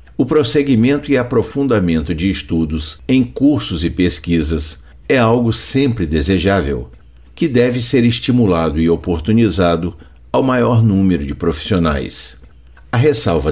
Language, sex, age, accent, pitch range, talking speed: Portuguese, male, 60-79, Brazilian, 80-120 Hz, 120 wpm